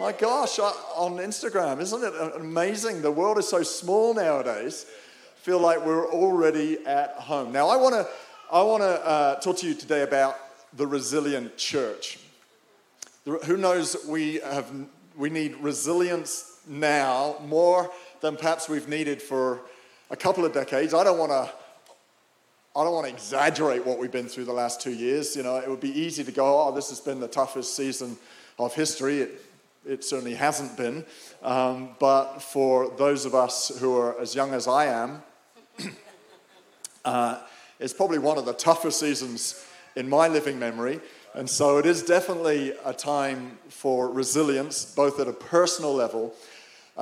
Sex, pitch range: male, 130-160 Hz